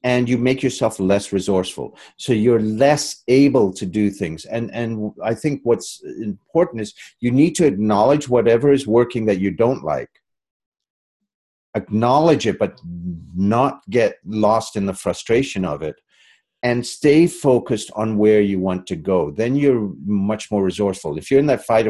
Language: English